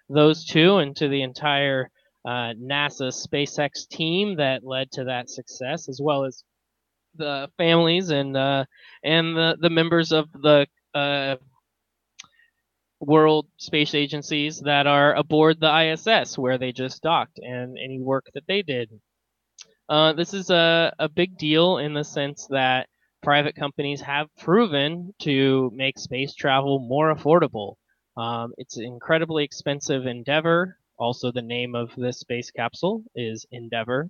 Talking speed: 145 wpm